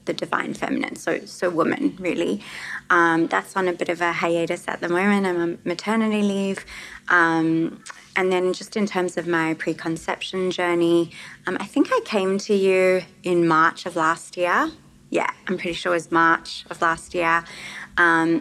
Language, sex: English, female